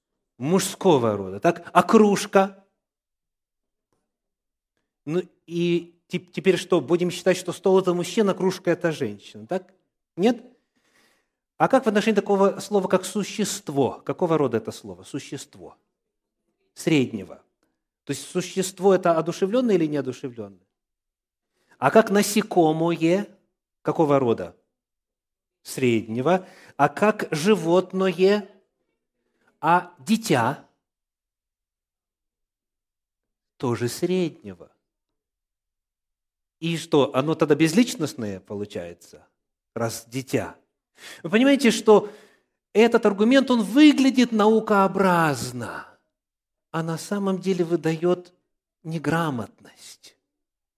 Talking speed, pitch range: 90 wpm, 150-200 Hz